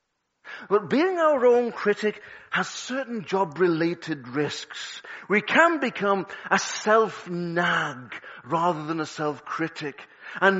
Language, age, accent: English, 40-59, British